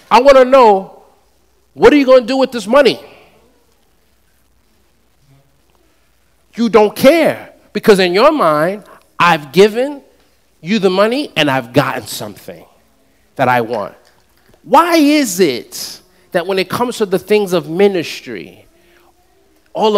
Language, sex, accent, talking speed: English, male, American, 135 wpm